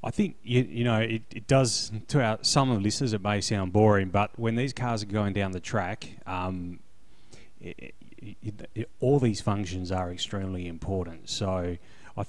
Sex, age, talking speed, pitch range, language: male, 30-49, 170 wpm, 95-115 Hz, English